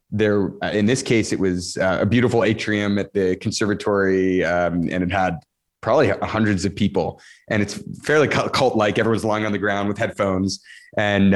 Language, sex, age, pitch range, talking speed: English, male, 30-49, 100-125 Hz, 170 wpm